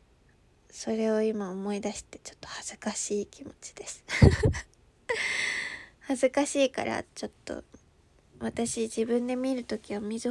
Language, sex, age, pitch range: Japanese, female, 20-39, 220-260 Hz